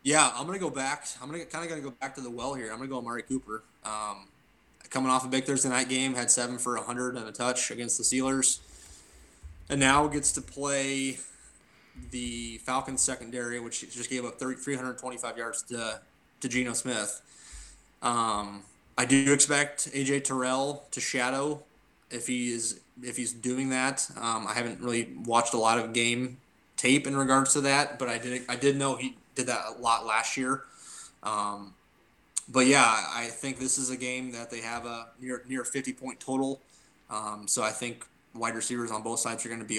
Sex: male